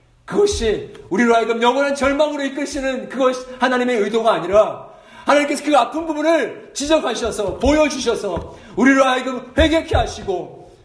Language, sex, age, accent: Korean, male, 40-59, native